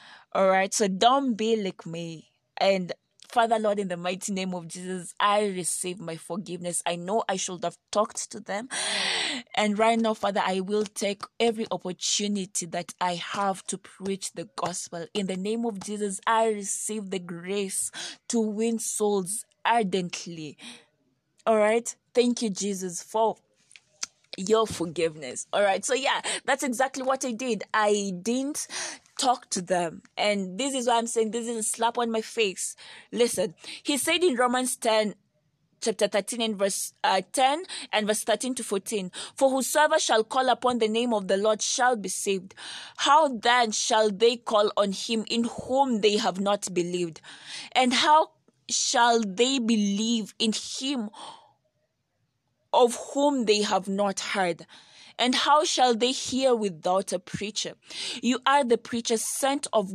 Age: 20-39